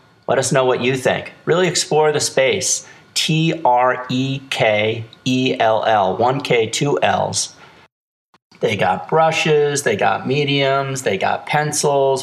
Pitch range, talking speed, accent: 110-135 Hz, 120 wpm, American